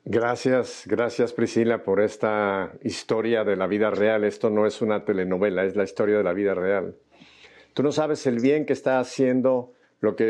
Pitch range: 110-135 Hz